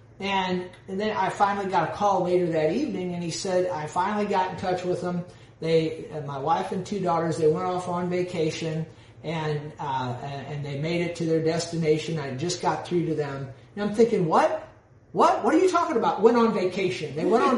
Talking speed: 220 wpm